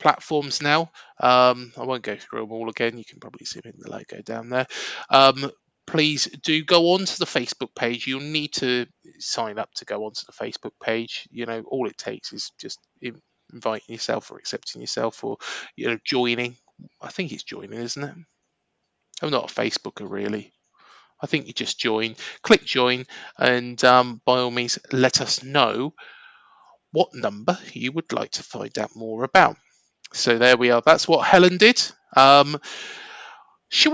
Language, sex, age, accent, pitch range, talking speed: English, male, 20-39, British, 125-180 Hz, 180 wpm